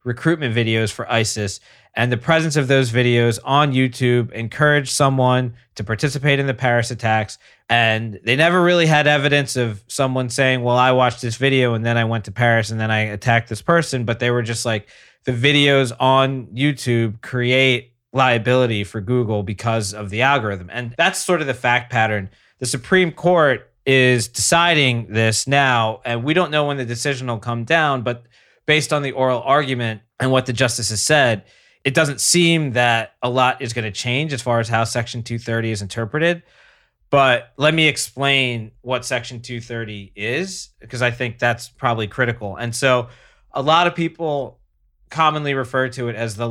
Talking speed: 185 wpm